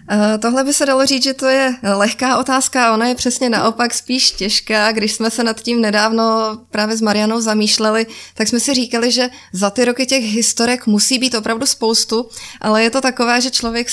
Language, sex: Slovak, female